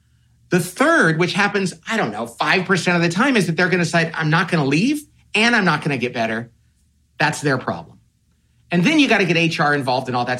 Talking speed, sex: 250 wpm, male